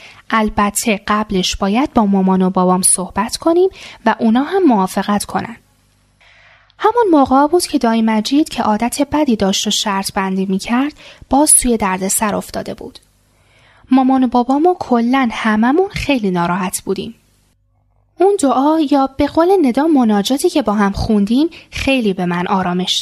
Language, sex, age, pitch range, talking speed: Persian, female, 10-29, 200-305 Hz, 155 wpm